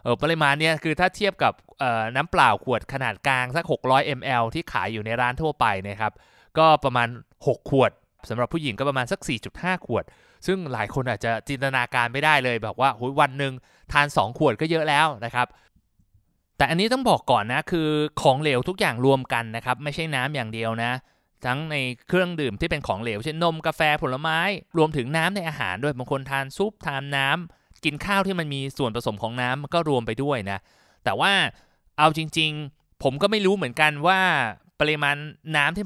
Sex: male